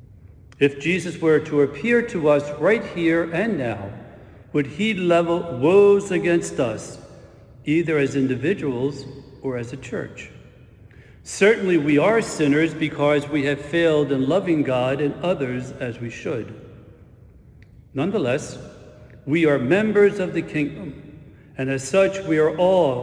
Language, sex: English, male